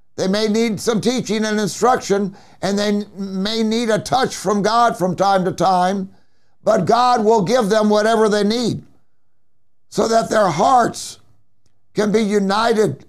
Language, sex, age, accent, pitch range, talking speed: English, male, 60-79, American, 170-220 Hz, 155 wpm